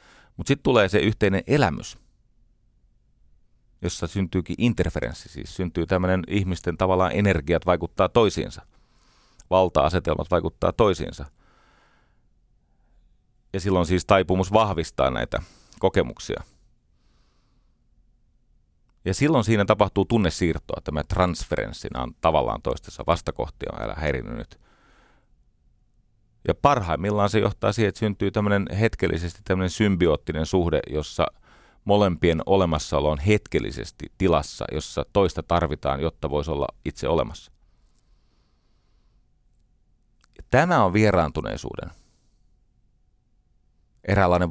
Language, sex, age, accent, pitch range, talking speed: Finnish, male, 30-49, native, 80-105 Hz, 95 wpm